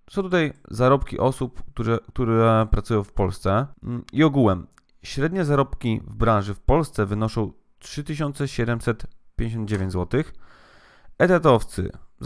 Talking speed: 105 wpm